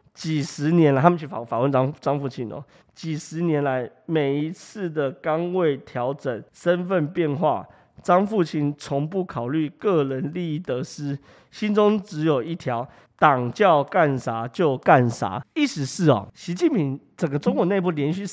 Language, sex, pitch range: Chinese, male, 130-170 Hz